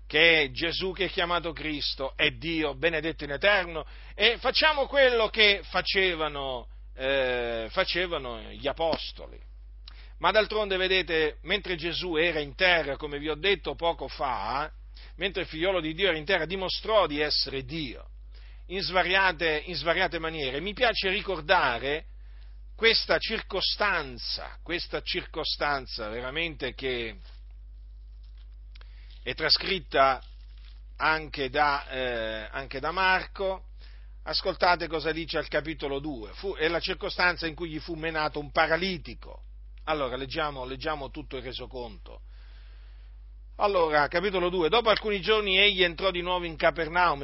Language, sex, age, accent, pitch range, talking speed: Italian, male, 50-69, native, 130-180 Hz, 135 wpm